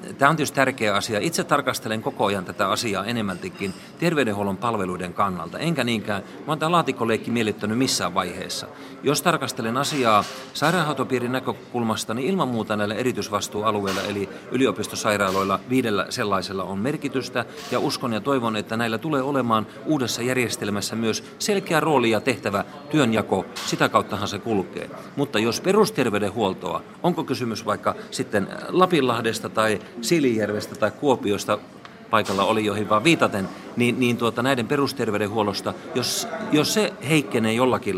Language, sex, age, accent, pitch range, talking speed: Finnish, male, 40-59, native, 105-135 Hz, 130 wpm